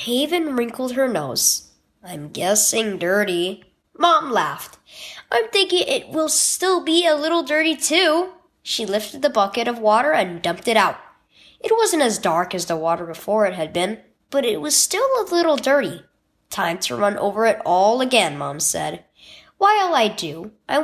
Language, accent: English, American